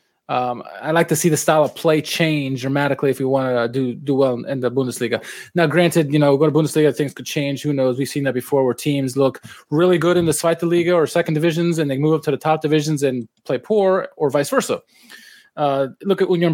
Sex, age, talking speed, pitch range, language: male, 20-39, 245 wpm, 140-170 Hz, English